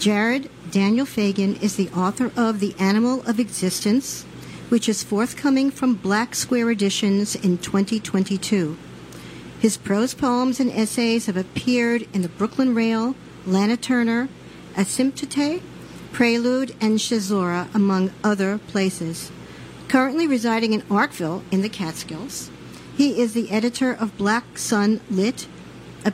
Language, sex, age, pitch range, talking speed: English, male, 50-69, 195-240 Hz, 130 wpm